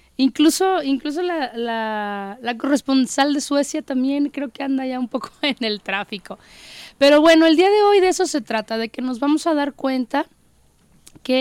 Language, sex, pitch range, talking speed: Spanish, female, 230-290 Hz, 190 wpm